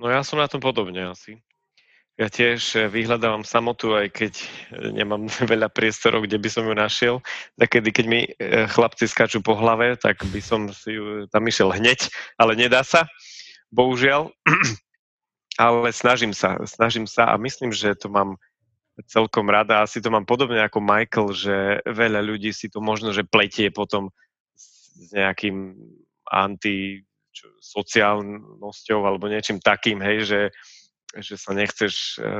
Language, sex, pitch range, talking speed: Slovak, male, 105-120 Hz, 145 wpm